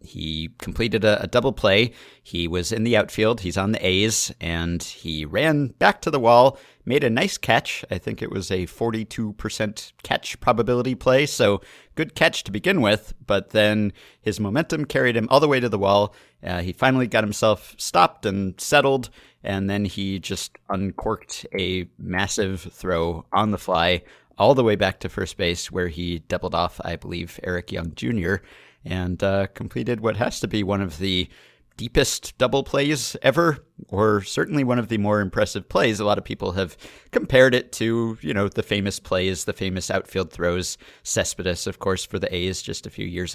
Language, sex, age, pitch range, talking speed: English, male, 30-49, 90-115 Hz, 190 wpm